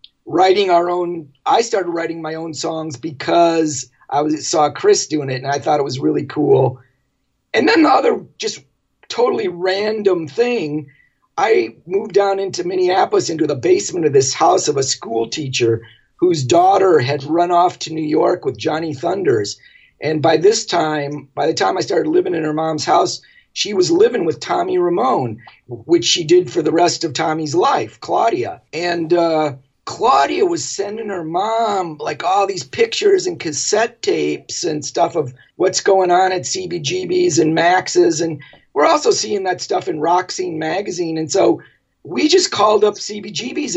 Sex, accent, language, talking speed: male, American, English, 175 wpm